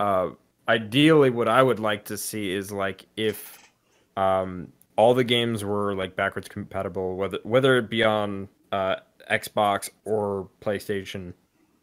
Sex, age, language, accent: male, 20-39, English, American